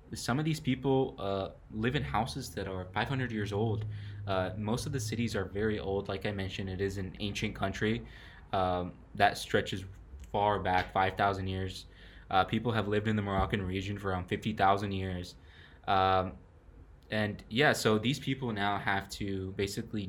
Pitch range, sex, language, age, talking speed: 95-115 Hz, male, English, 20-39, 175 wpm